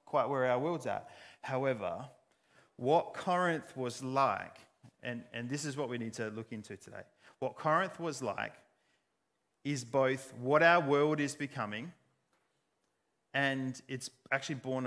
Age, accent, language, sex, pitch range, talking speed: 30-49, Australian, English, male, 115-140 Hz, 145 wpm